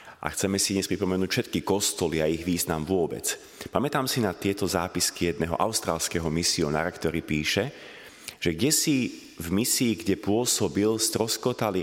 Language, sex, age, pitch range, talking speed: Slovak, male, 30-49, 90-115 Hz, 145 wpm